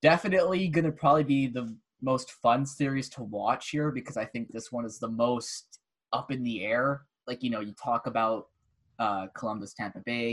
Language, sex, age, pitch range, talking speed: English, male, 10-29, 115-140 Hz, 190 wpm